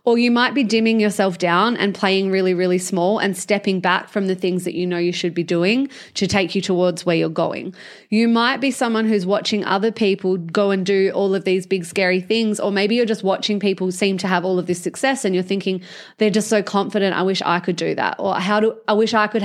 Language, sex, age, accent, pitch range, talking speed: English, female, 20-39, Australian, 195-235 Hz, 255 wpm